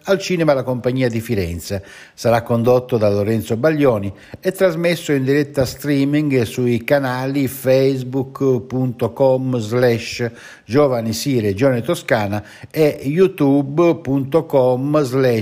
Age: 60-79